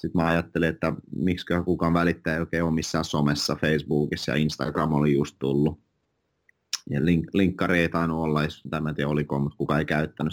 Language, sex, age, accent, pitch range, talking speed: Finnish, male, 30-49, native, 75-90 Hz, 165 wpm